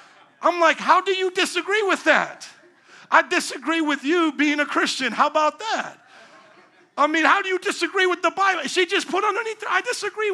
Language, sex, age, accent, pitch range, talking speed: English, male, 50-69, American, 225-310 Hz, 190 wpm